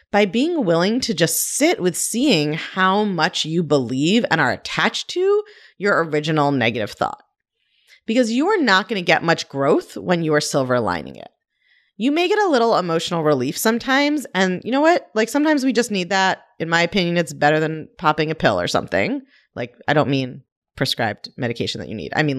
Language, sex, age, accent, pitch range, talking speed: English, female, 30-49, American, 150-220 Hz, 200 wpm